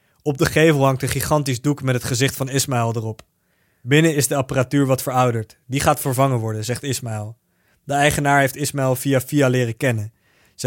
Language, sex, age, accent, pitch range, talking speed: English, male, 20-39, Dutch, 120-140 Hz, 190 wpm